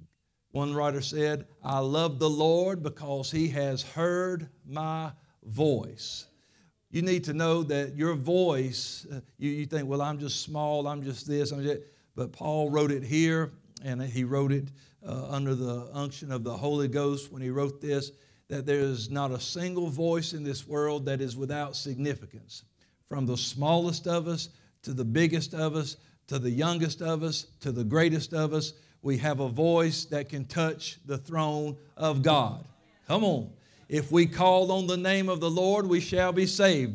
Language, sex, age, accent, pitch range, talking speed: English, male, 50-69, American, 140-165 Hz, 185 wpm